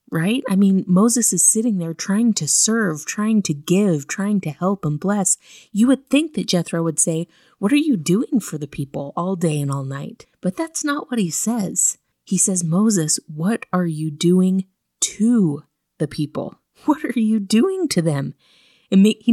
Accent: American